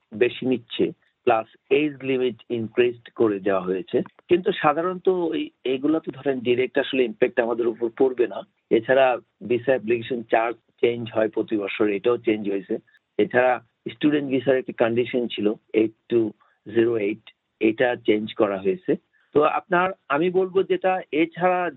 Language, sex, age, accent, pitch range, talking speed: Bengali, male, 50-69, native, 115-160 Hz, 45 wpm